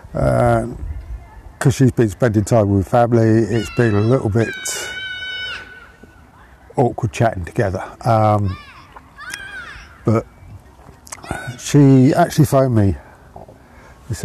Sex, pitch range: male, 100-130 Hz